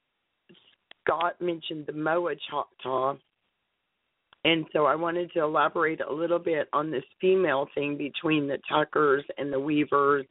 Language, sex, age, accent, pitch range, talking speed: English, female, 40-59, American, 140-175 Hz, 140 wpm